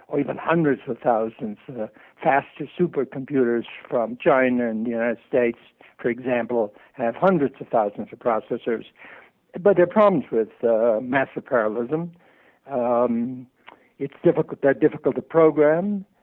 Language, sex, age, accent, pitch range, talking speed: English, male, 60-79, American, 125-165 Hz, 135 wpm